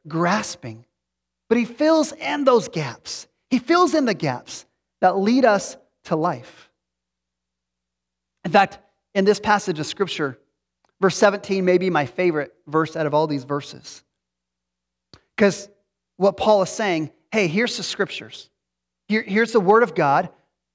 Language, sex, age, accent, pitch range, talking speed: English, male, 40-59, American, 140-205 Hz, 150 wpm